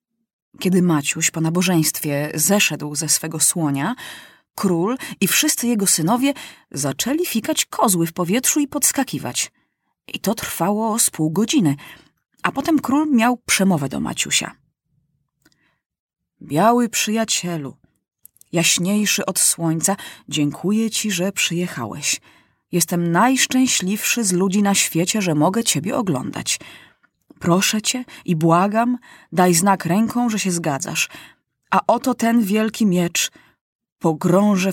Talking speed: 115 wpm